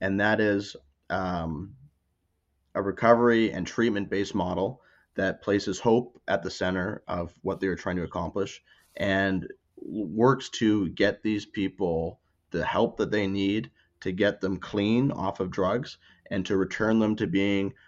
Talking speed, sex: 155 wpm, male